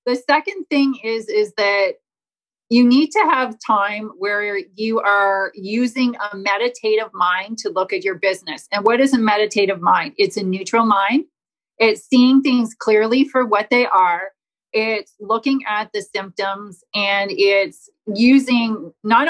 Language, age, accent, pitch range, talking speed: English, 30-49, American, 195-240 Hz, 155 wpm